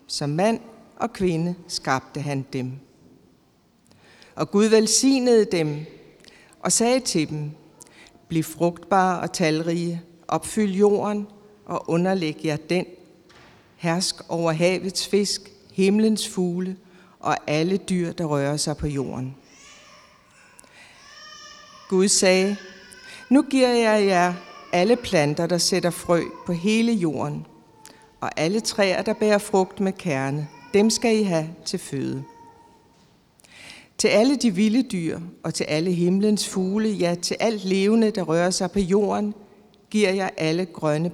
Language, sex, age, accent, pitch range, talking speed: Danish, female, 60-79, native, 160-210 Hz, 130 wpm